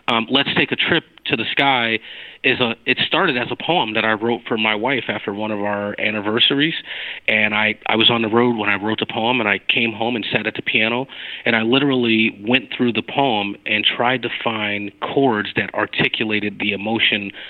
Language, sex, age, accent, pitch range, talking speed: English, male, 30-49, American, 105-125 Hz, 215 wpm